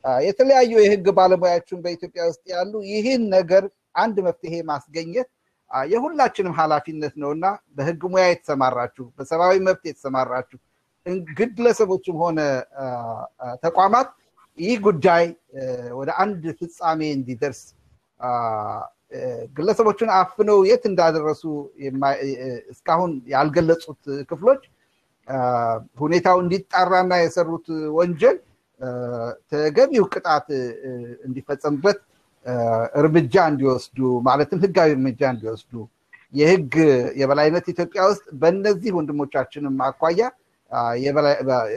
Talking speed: 85 wpm